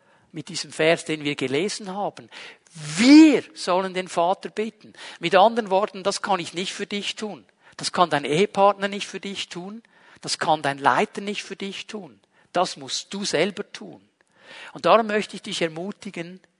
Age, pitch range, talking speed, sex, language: 50-69, 170-215 Hz, 175 wpm, male, German